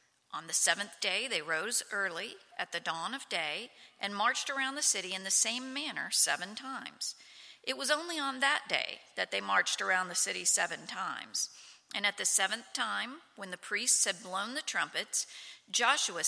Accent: American